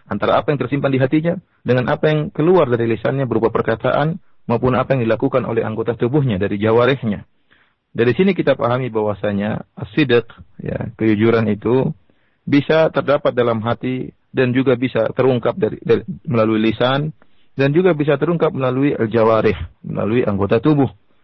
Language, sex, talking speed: Indonesian, male, 155 wpm